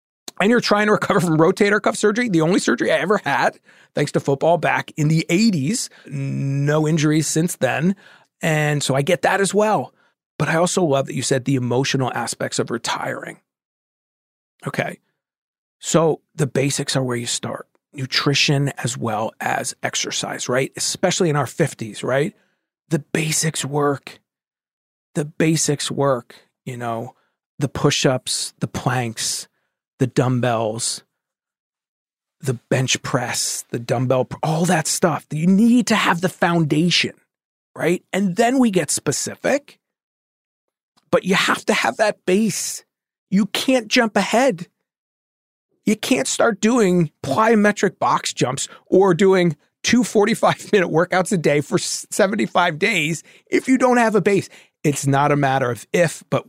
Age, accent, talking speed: 40-59, American, 150 wpm